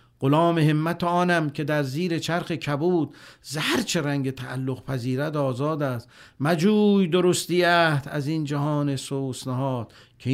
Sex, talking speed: male, 120 wpm